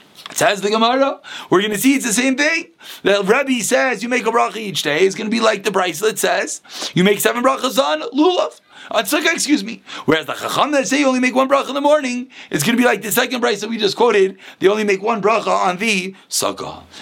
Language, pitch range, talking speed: English, 210-275 Hz, 245 wpm